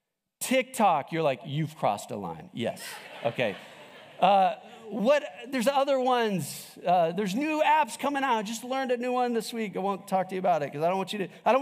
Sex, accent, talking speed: male, American, 220 wpm